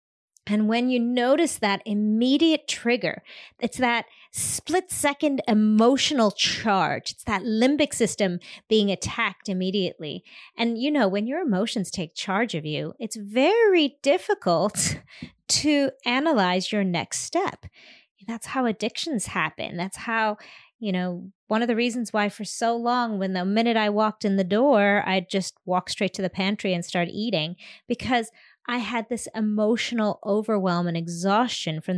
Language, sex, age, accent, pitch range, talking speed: English, female, 30-49, American, 195-245 Hz, 150 wpm